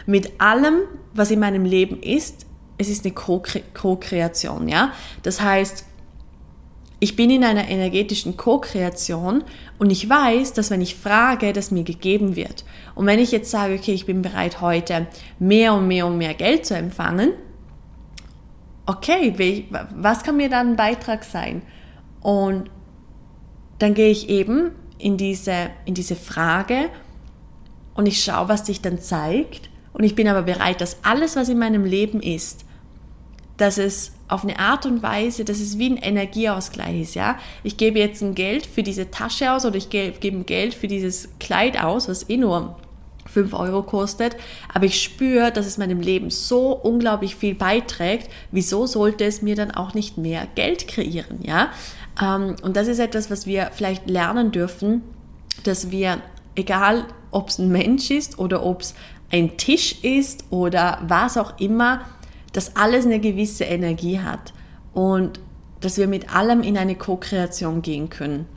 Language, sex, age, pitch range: German, female, 20-39, 180-220 Hz